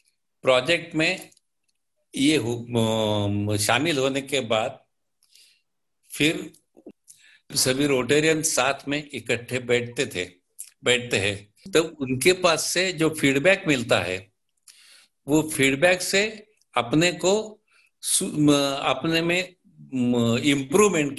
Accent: native